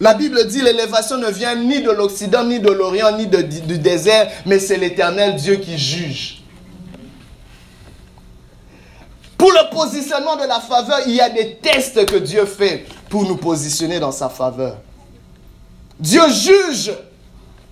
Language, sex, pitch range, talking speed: French, male, 185-285 Hz, 150 wpm